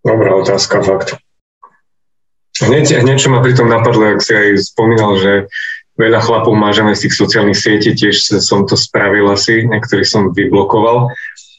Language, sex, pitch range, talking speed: Slovak, male, 105-125 Hz, 145 wpm